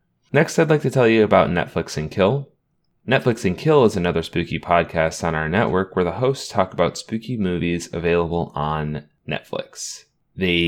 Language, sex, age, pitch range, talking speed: English, male, 20-39, 80-100 Hz, 175 wpm